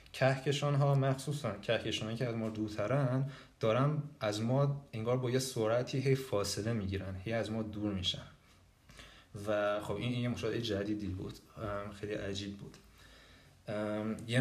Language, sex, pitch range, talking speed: Persian, male, 100-125 Hz, 145 wpm